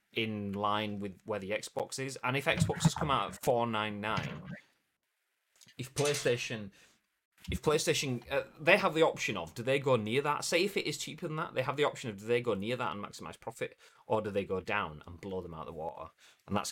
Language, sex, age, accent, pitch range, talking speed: English, male, 30-49, British, 100-130 Hz, 230 wpm